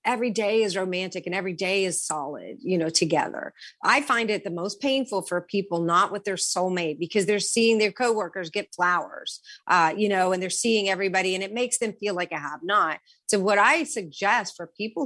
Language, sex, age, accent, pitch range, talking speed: English, female, 40-59, American, 180-225 Hz, 210 wpm